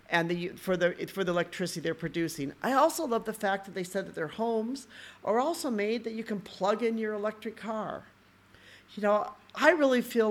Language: English